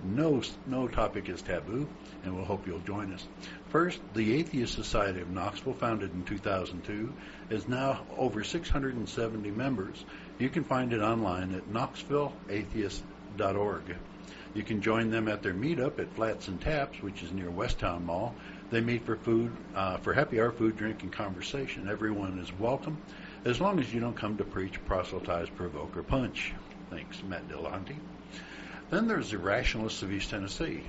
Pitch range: 95-120 Hz